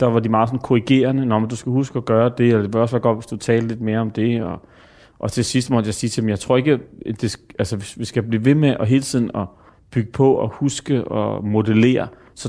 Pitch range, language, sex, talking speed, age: 105-125 Hz, Danish, male, 270 wpm, 30-49